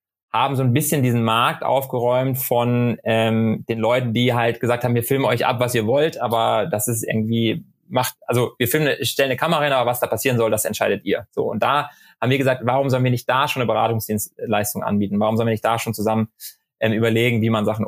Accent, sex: German, male